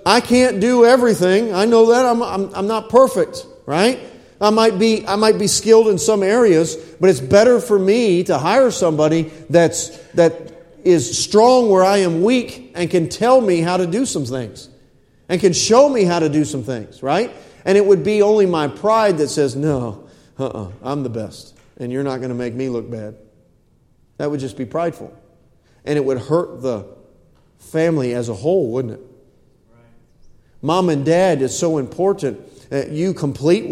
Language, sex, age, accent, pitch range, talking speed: English, male, 40-59, American, 135-190 Hz, 190 wpm